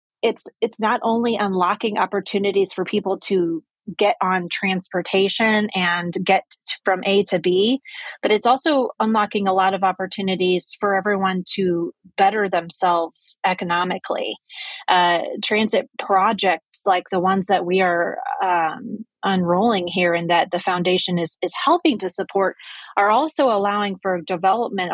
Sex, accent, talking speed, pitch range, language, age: female, American, 140 wpm, 185-225 Hz, English, 30-49